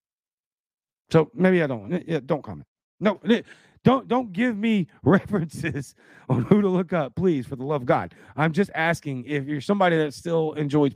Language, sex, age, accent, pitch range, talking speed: English, male, 40-59, American, 145-220 Hz, 180 wpm